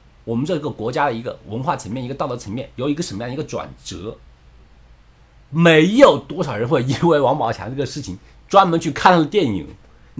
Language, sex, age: Chinese, male, 50-69